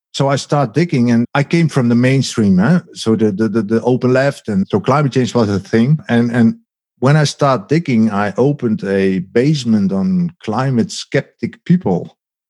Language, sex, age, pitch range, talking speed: English, male, 50-69, 115-155 Hz, 185 wpm